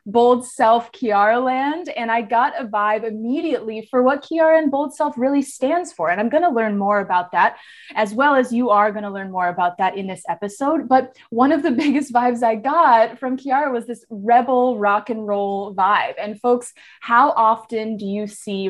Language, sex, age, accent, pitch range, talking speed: English, female, 20-39, American, 210-275 Hz, 200 wpm